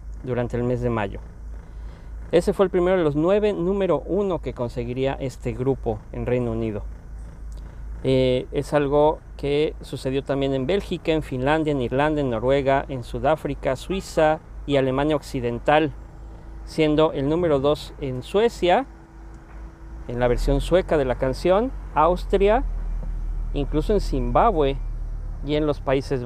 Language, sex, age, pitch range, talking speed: Spanish, male, 40-59, 125-160 Hz, 140 wpm